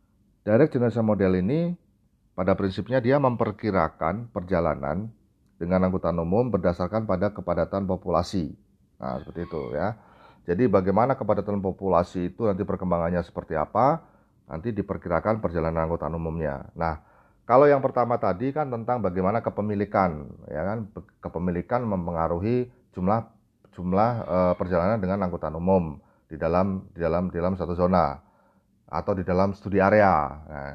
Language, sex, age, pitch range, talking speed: Indonesian, male, 40-59, 85-110 Hz, 135 wpm